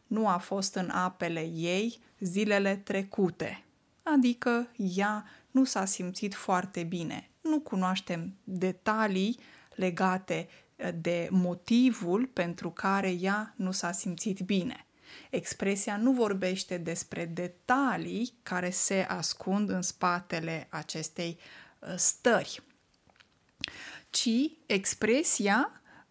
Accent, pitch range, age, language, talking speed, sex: native, 185-225 Hz, 20-39, Romanian, 95 wpm, female